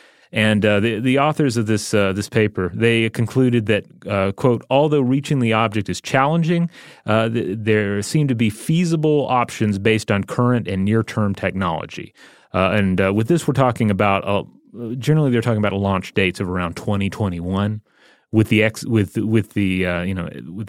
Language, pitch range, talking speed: English, 95-115 Hz, 185 wpm